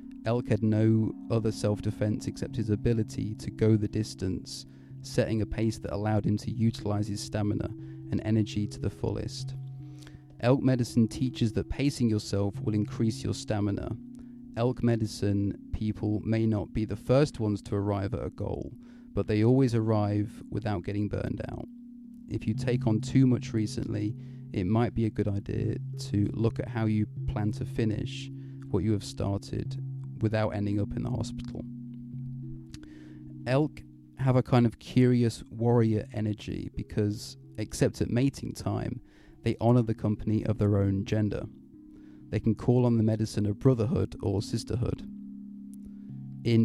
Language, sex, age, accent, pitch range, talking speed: English, male, 30-49, British, 105-125 Hz, 155 wpm